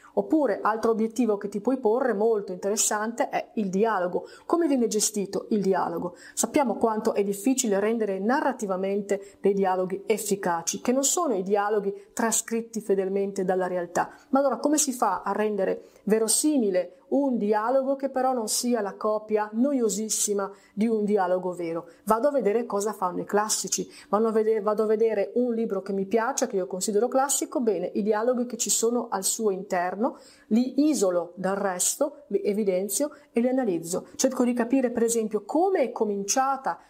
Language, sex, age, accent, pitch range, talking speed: Italian, female, 30-49, native, 200-250 Hz, 165 wpm